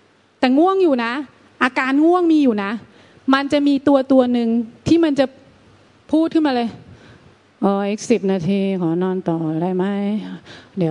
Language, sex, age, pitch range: Thai, female, 30-49, 185-270 Hz